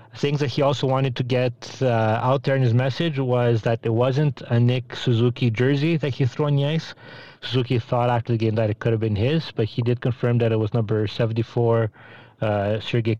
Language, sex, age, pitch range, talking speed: English, male, 30-49, 115-135 Hz, 225 wpm